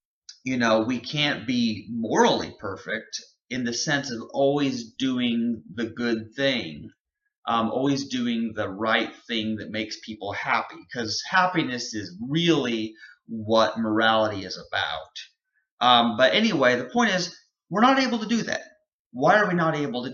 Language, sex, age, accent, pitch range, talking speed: English, male, 30-49, American, 115-180 Hz, 155 wpm